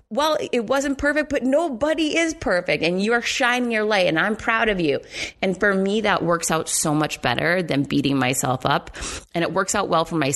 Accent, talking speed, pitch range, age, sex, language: American, 225 wpm, 145-200 Hz, 30-49, female, English